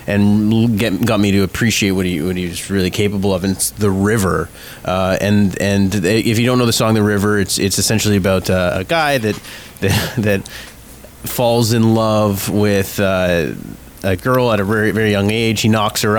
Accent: American